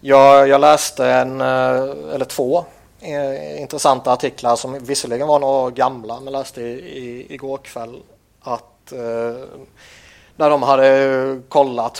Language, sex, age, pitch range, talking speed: Swedish, male, 30-49, 105-135 Hz, 130 wpm